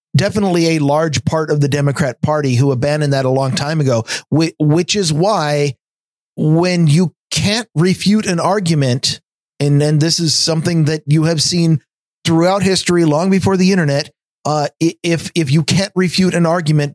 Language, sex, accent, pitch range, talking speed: English, male, American, 145-170 Hz, 170 wpm